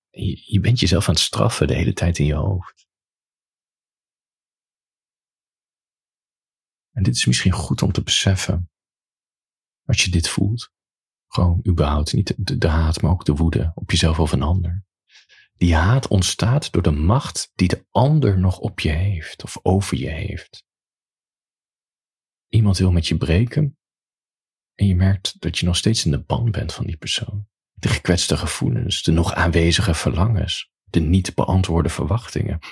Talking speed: 160 wpm